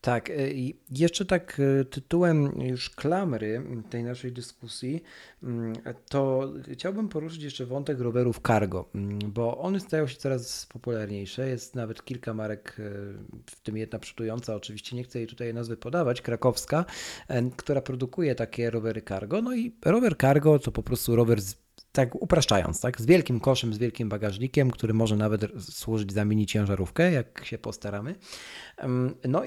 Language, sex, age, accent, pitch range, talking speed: Polish, male, 40-59, native, 110-145 Hz, 145 wpm